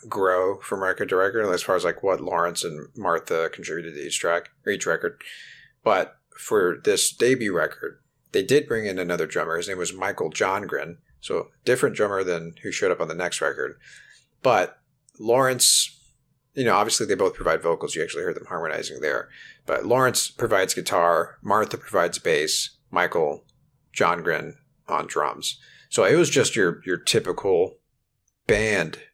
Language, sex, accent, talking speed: English, male, American, 165 wpm